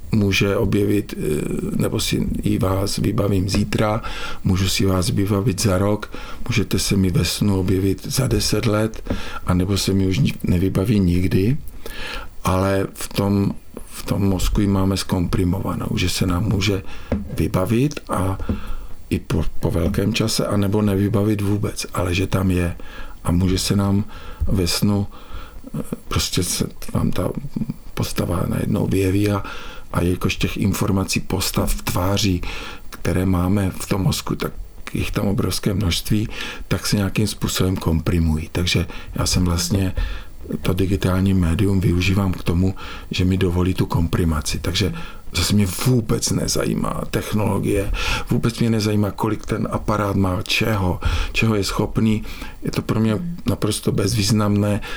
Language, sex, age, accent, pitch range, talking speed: Czech, male, 50-69, native, 90-105 Hz, 140 wpm